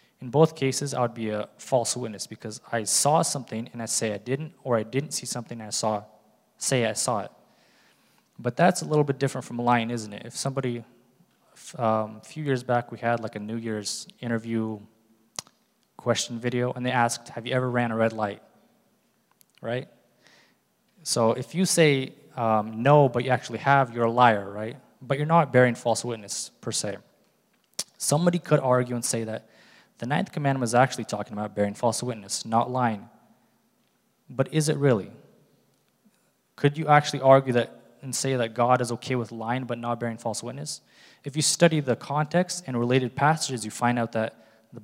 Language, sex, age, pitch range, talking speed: English, male, 20-39, 115-135 Hz, 185 wpm